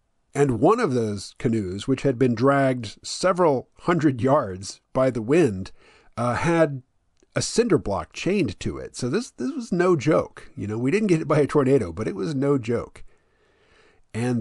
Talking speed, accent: 185 wpm, American